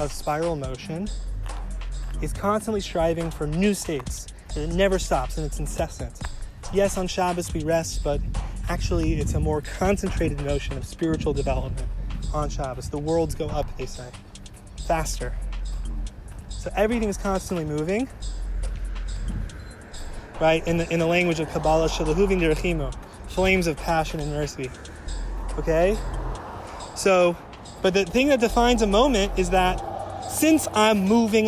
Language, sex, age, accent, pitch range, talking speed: English, male, 20-39, American, 135-200 Hz, 135 wpm